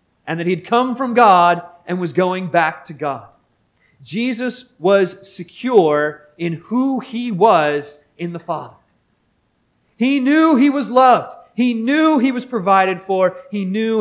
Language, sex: English, male